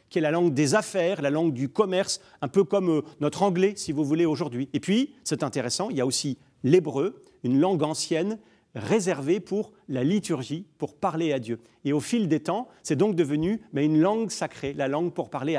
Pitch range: 150-220 Hz